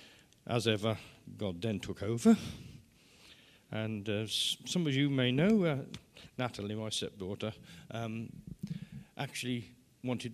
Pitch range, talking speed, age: 110-130 Hz, 115 wpm, 50-69